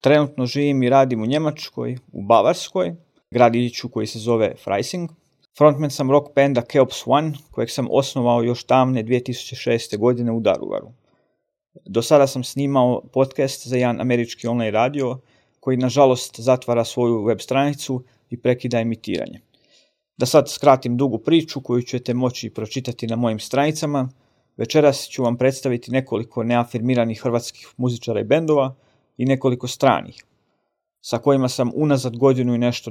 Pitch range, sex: 120-140 Hz, male